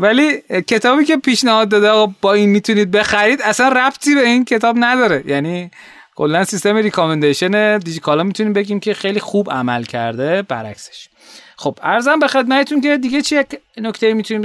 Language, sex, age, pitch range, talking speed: Persian, male, 30-49, 150-215 Hz, 160 wpm